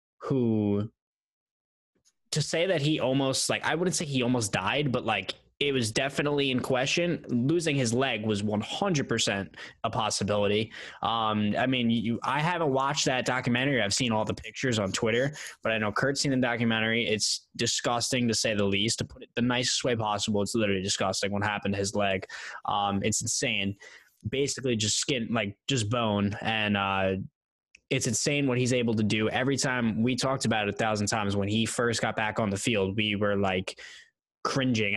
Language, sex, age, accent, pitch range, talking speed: English, male, 10-29, American, 105-130 Hz, 190 wpm